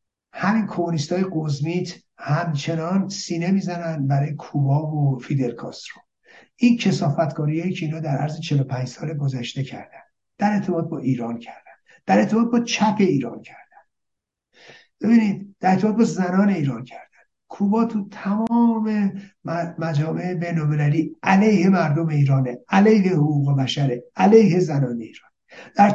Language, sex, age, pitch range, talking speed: Persian, male, 60-79, 150-205 Hz, 125 wpm